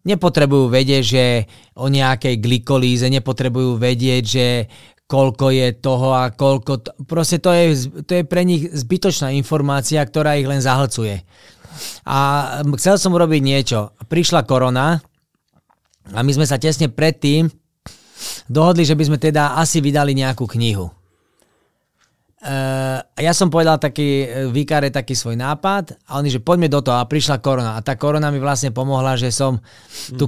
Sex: male